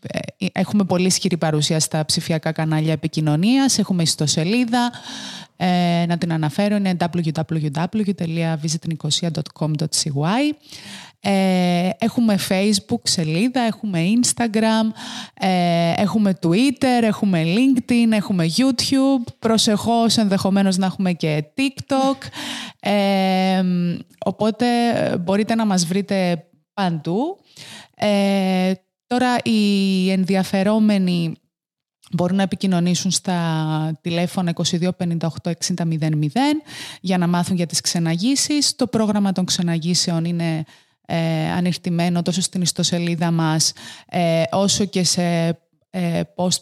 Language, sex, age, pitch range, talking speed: Greek, female, 20-39, 165-210 Hz, 95 wpm